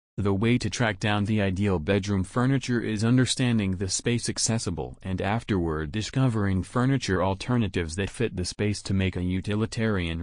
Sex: male